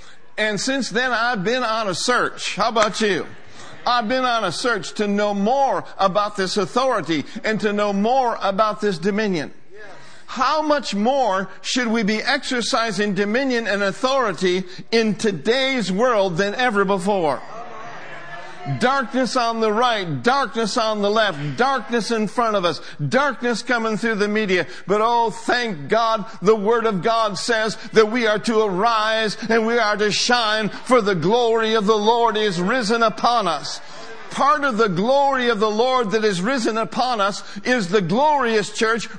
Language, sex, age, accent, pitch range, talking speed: English, male, 60-79, American, 210-250 Hz, 165 wpm